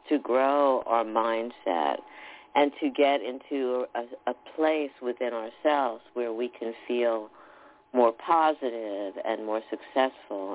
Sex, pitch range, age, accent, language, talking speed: female, 125-155 Hz, 50-69, American, English, 125 wpm